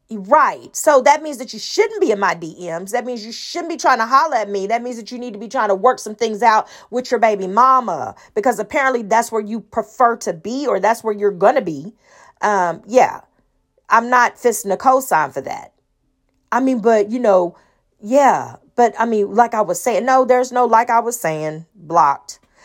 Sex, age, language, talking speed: female, 40-59, English, 220 wpm